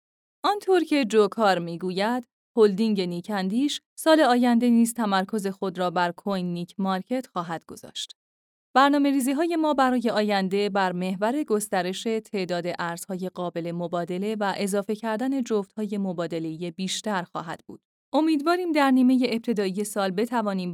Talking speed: 130 wpm